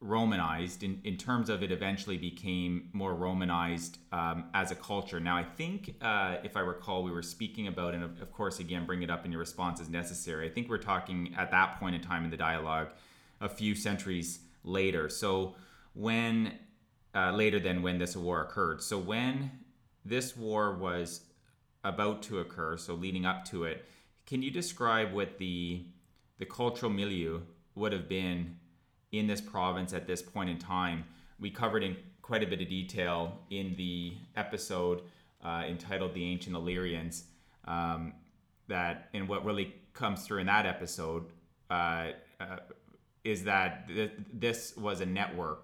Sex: male